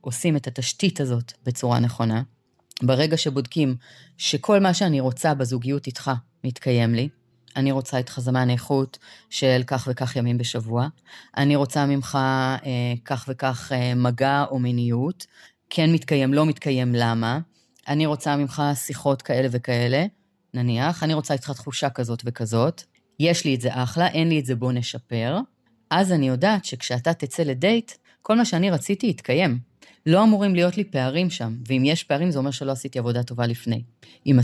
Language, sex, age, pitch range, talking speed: Hebrew, female, 30-49, 125-165 Hz, 160 wpm